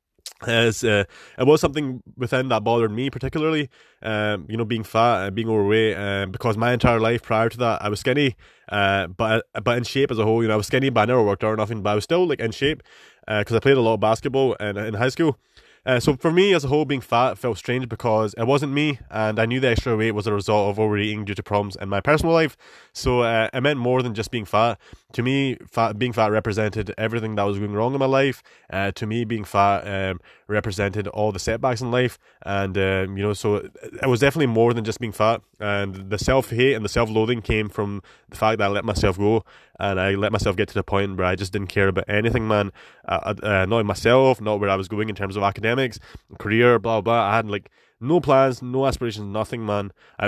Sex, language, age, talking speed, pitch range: male, English, 20-39, 245 wpm, 100-125 Hz